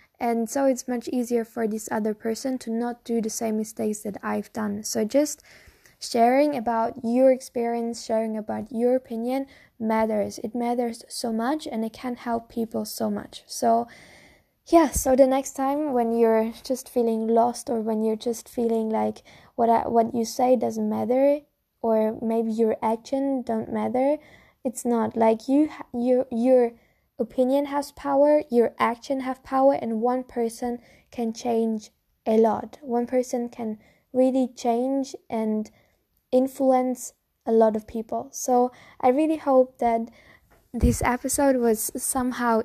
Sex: female